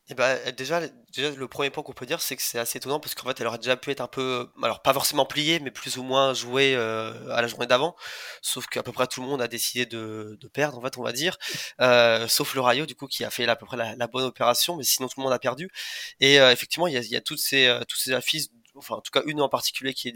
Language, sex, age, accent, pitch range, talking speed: French, male, 20-39, French, 120-135 Hz, 305 wpm